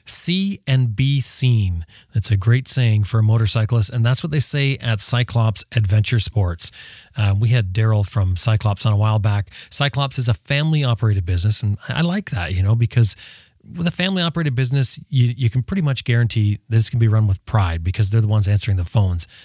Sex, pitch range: male, 105-130 Hz